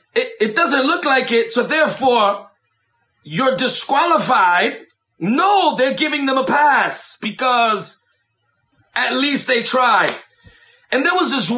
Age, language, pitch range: 40-59, English, 230-305 Hz